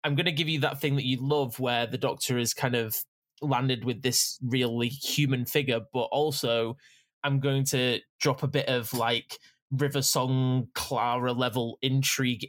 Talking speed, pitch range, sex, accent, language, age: 180 wpm, 125-145 Hz, male, British, English, 20-39